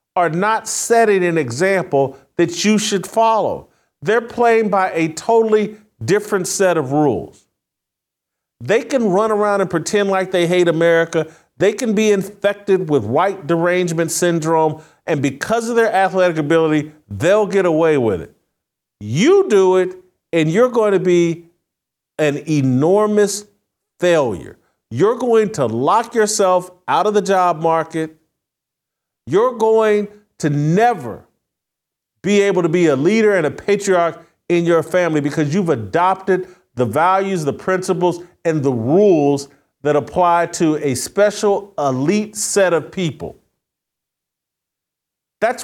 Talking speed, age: 135 wpm, 50-69